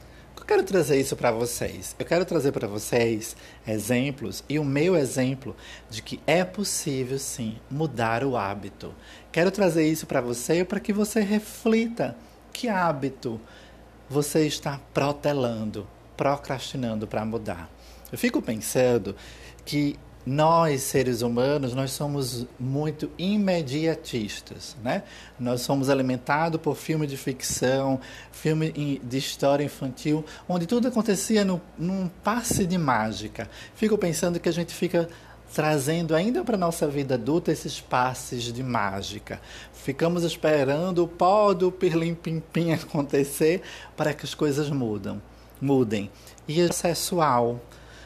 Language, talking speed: Portuguese, 130 wpm